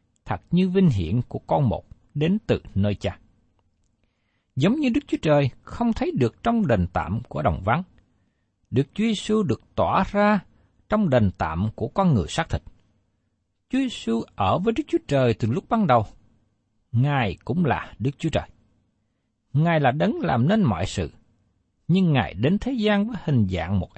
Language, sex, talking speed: Vietnamese, male, 185 wpm